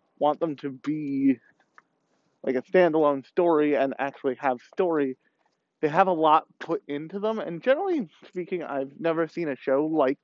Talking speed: 165 wpm